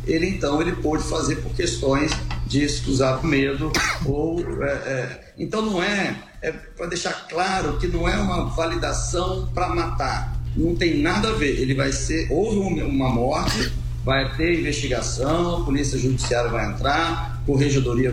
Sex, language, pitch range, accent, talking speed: male, Portuguese, 125-170 Hz, Brazilian, 155 wpm